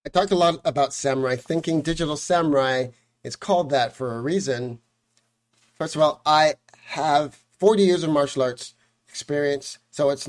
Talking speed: 165 wpm